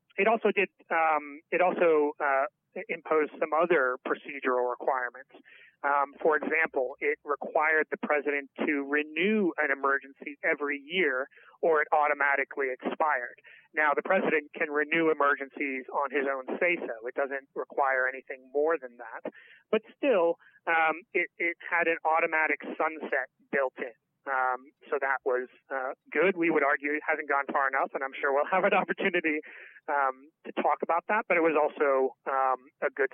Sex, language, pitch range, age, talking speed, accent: male, English, 140-170 Hz, 30-49, 165 wpm, American